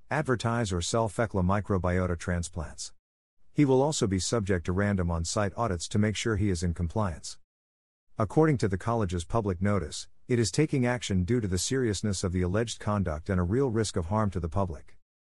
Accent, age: American, 50-69